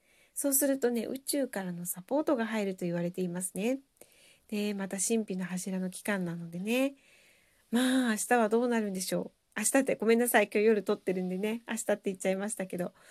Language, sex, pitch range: Japanese, female, 185-250 Hz